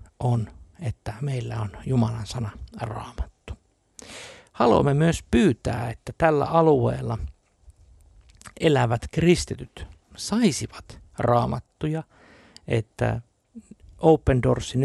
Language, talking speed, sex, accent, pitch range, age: Finnish, 80 wpm, male, native, 105-135 Hz, 60-79